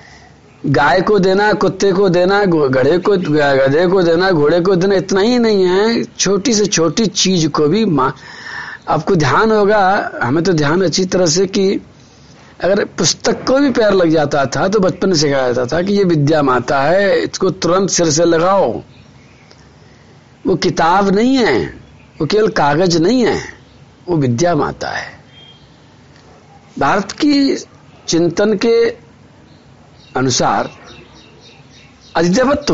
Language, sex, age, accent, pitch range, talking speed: Hindi, male, 60-79, native, 155-215 Hz, 135 wpm